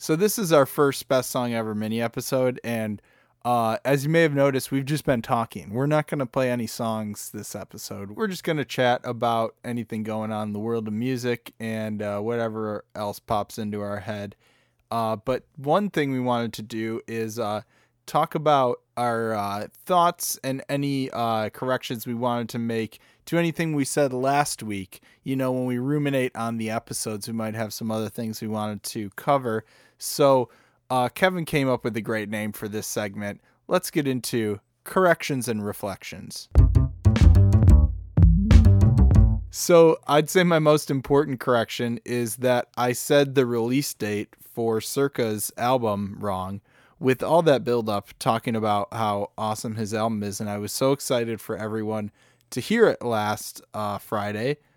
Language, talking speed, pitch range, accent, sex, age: English, 175 wpm, 110-135 Hz, American, male, 20-39